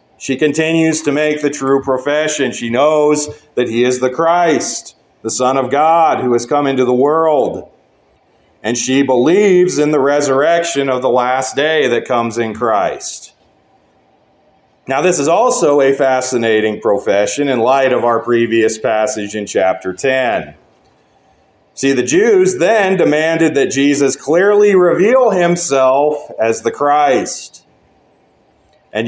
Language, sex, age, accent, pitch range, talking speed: English, male, 40-59, American, 120-155 Hz, 140 wpm